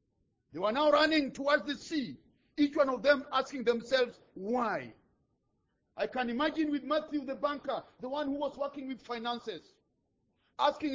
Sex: male